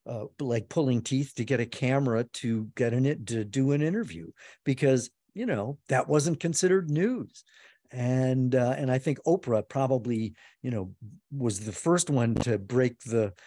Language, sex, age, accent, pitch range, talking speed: English, male, 50-69, American, 115-145 Hz, 170 wpm